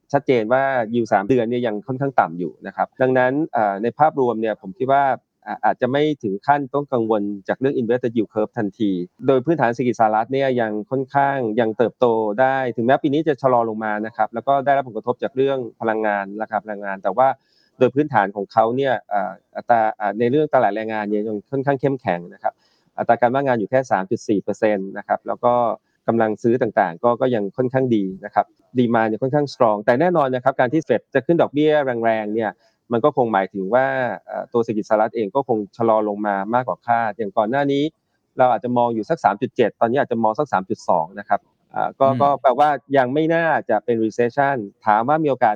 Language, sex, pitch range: Thai, male, 110-135 Hz